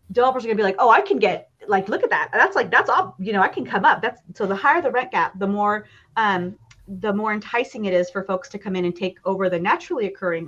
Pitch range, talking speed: 200-270 Hz, 280 wpm